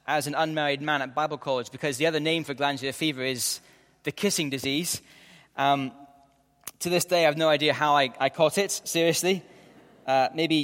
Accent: British